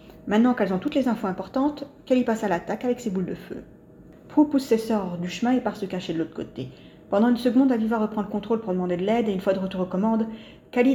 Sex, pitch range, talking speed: female, 185-240 Hz, 265 wpm